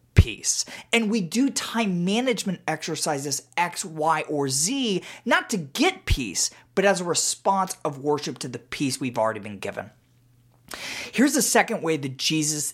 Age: 30-49